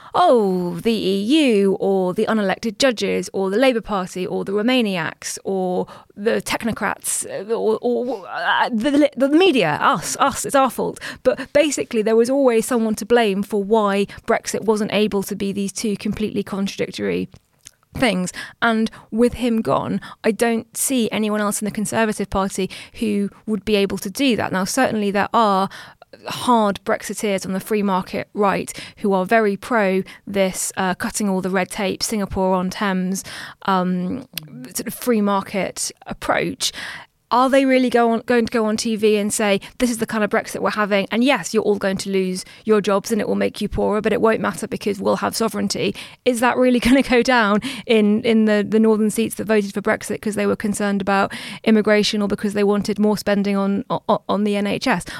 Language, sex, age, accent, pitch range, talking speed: English, female, 20-39, British, 195-230 Hz, 190 wpm